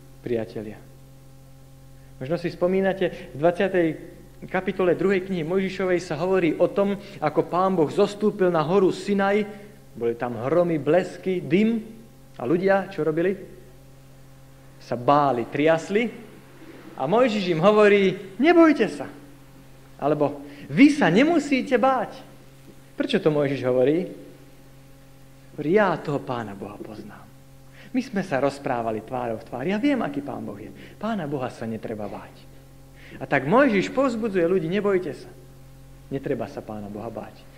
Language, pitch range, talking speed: Slovak, 130-185 Hz, 135 wpm